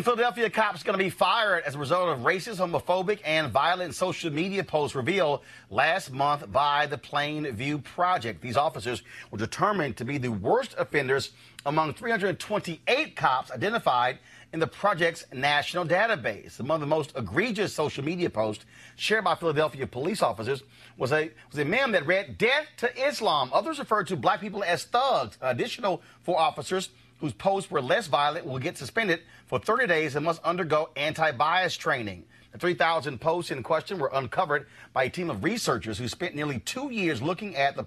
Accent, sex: American, male